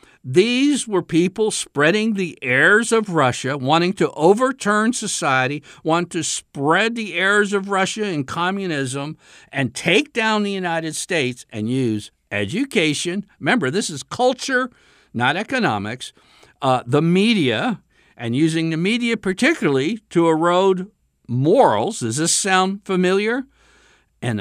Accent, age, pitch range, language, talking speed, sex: American, 60-79, 120-185 Hz, English, 130 wpm, male